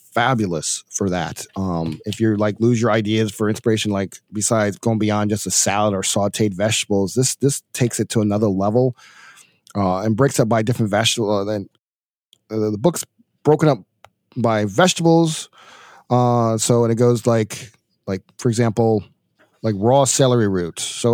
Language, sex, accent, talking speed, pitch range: English, male, American, 165 wpm, 110-140 Hz